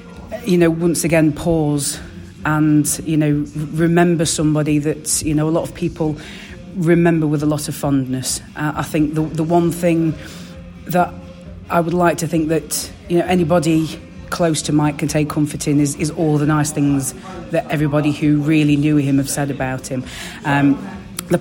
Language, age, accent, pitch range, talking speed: English, 30-49, British, 145-165 Hz, 180 wpm